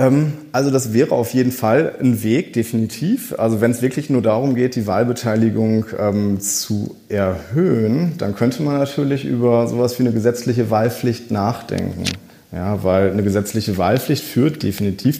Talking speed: 145 wpm